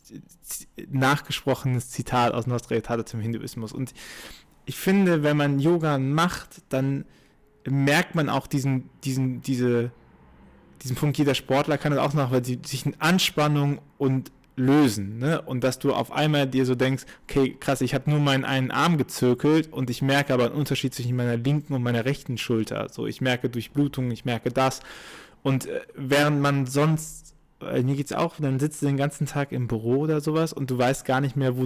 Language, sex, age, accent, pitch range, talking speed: German, male, 20-39, German, 130-150 Hz, 190 wpm